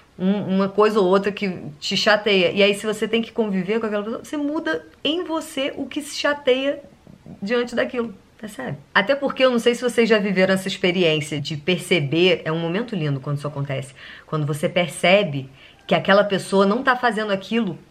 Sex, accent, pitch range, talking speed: female, Brazilian, 165-250 Hz, 195 wpm